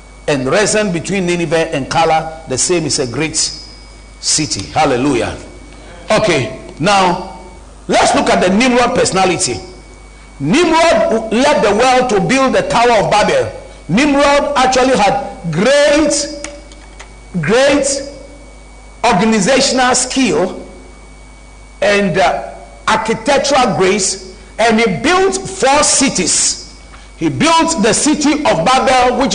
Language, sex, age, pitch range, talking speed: English, male, 50-69, 205-285 Hz, 110 wpm